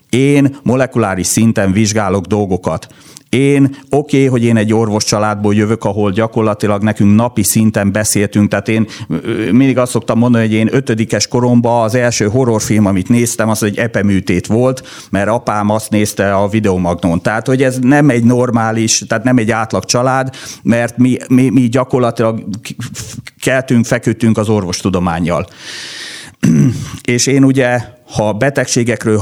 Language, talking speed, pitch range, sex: Hungarian, 145 wpm, 105-125 Hz, male